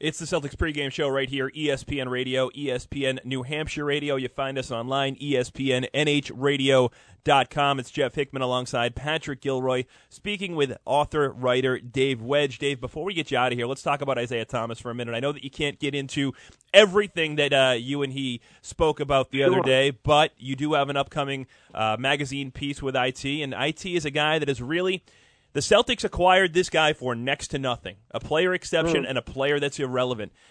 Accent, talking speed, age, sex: American, 195 wpm, 30-49, male